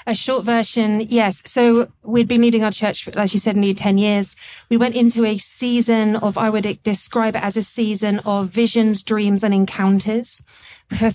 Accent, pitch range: British, 195-225 Hz